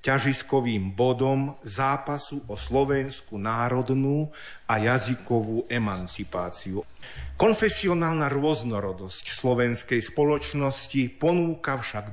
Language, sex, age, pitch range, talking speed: Slovak, male, 50-69, 110-130 Hz, 75 wpm